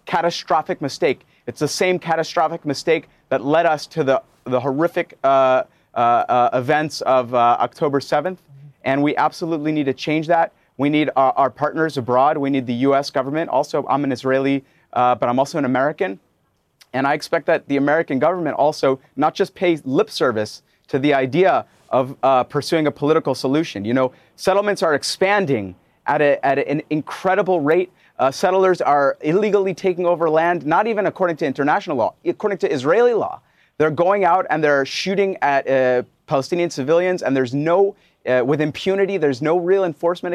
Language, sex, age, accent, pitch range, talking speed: English, male, 30-49, American, 140-180 Hz, 180 wpm